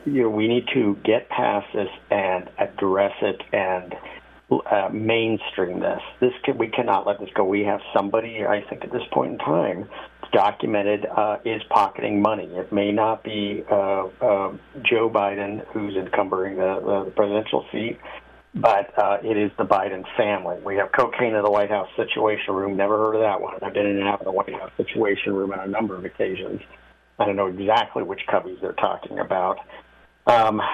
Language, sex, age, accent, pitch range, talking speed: English, male, 50-69, American, 100-115 Hz, 185 wpm